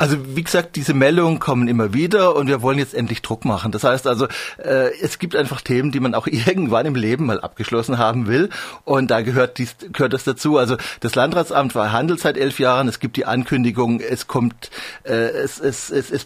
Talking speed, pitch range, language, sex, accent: 220 wpm, 120-145 Hz, German, male, German